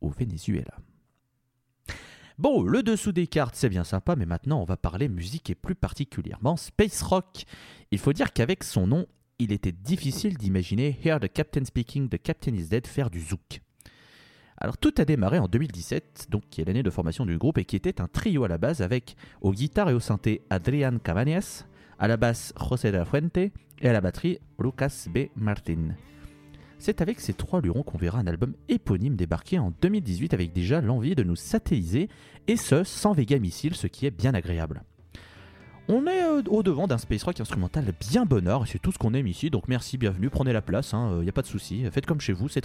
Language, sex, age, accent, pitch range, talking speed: French, male, 30-49, French, 90-145 Hz, 210 wpm